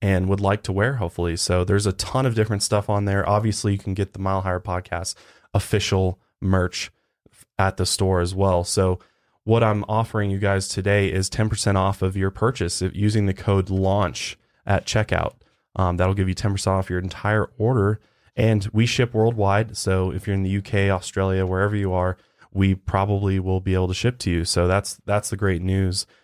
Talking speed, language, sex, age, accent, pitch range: 200 wpm, English, male, 20-39, American, 95-110 Hz